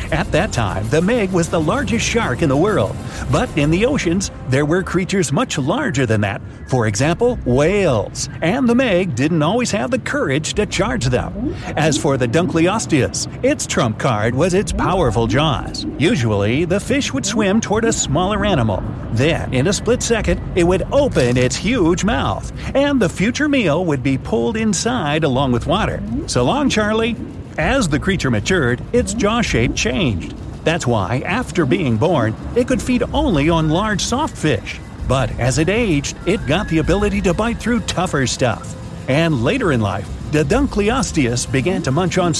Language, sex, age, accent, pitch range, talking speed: English, male, 50-69, American, 125-205 Hz, 180 wpm